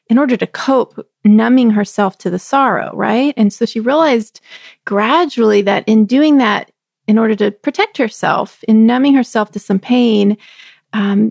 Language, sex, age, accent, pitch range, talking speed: English, female, 30-49, American, 205-255 Hz, 165 wpm